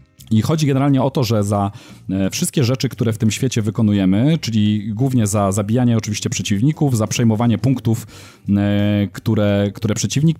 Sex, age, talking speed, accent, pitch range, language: male, 30-49, 150 wpm, native, 105-130 Hz, Polish